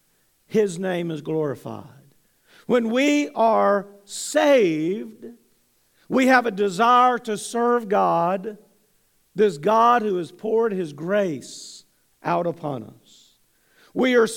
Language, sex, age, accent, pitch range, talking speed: English, male, 50-69, American, 195-245 Hz, 115 wpm